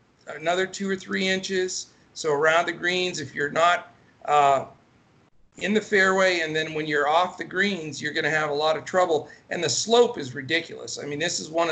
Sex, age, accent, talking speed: male, 50-69, American, 205 wpm